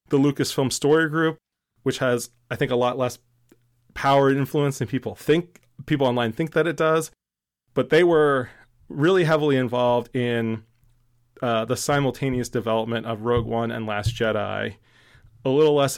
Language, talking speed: English, 160 wpm